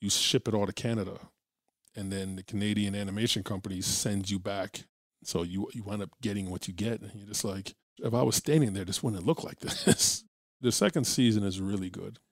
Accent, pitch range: American, 100-115 Hz